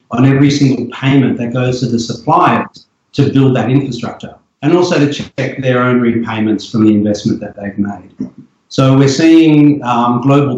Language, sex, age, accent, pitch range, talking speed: English, male, 50-69, Australian, 120-145 Hz, 175 wpm